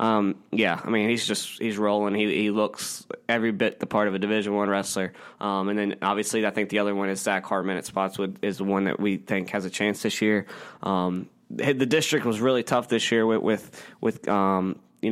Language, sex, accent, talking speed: English, male, American, 230 wpm